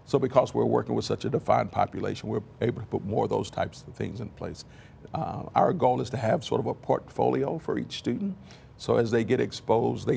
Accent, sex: American, male